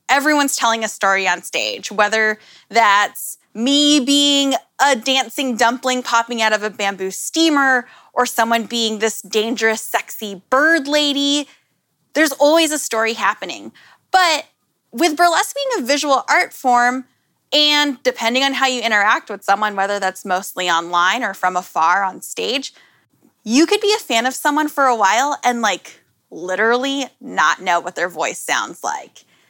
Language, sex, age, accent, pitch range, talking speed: English, female, 20-39, American, 210-280 Hz, 155 wpm